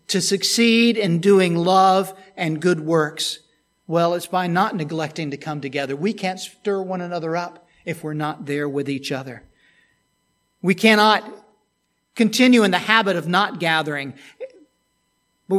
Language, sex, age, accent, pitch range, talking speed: English, male, 50-69, American, 175-215 Hz, 150 wpm